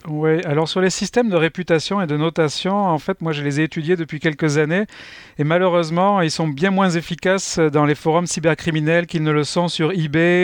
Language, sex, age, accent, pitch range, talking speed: French, male, 40-59, French, 155-175 Hz, 215 wpm